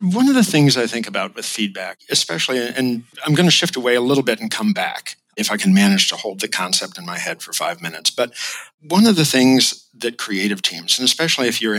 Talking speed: 245 wpm